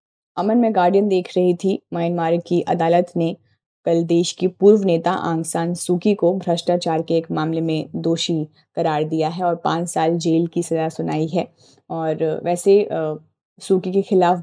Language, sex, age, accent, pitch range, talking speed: Hindi, female, 20-39, native, 165-190 Hz, 170 wpm